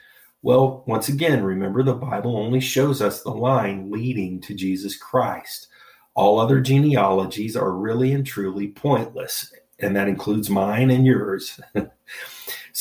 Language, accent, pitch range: English, American, 95-125 Hz